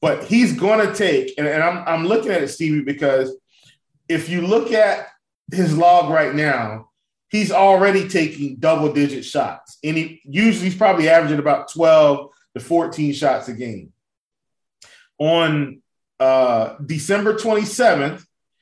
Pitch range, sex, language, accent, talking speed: 135-175 Hz, male, English, American, 140 wpm